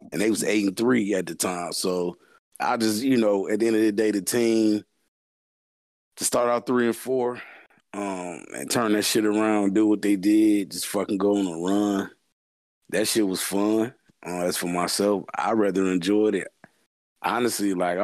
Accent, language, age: American, English, 30-49